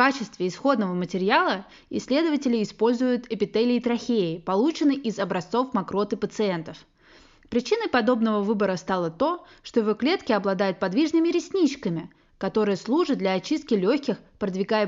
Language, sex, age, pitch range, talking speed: Russian, female, 20-39, 200-275 Hz, 120 wpm